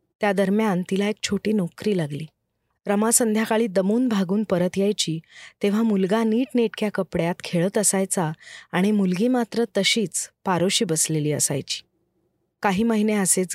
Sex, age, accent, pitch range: female, 30-49, native, 185-225 Hz